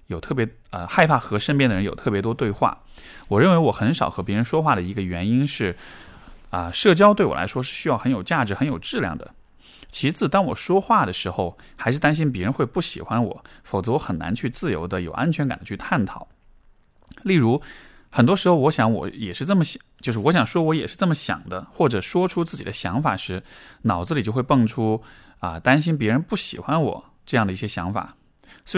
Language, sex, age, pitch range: Chinese, male, 20-39, 95-145 Hz